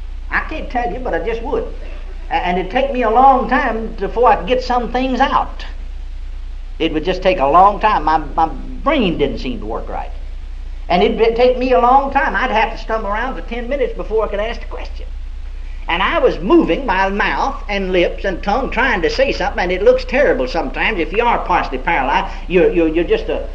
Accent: American